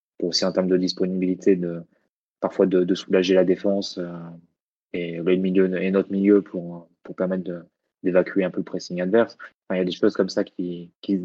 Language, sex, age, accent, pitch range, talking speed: French, male, 20-39, French, 90-100 Hz, 210 wpm